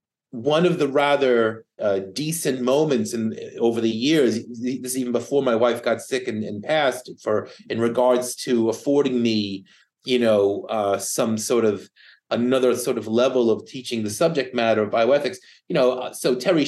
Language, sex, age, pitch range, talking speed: English, male, 30-49, 110-140 Hz, 175 wpm